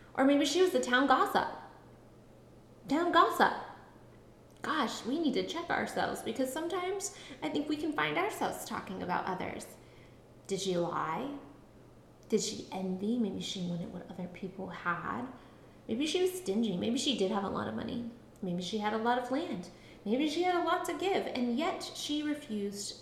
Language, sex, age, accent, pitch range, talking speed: English, female, 20-39, American, 200-290 Hz, 180 wpm